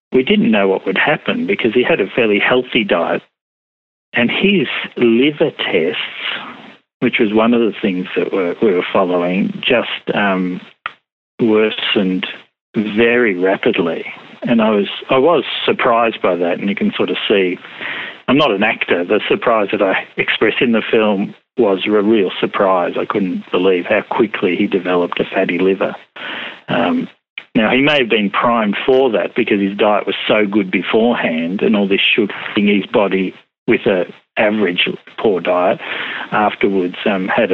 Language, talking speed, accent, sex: English, 165 wpm, Australian, male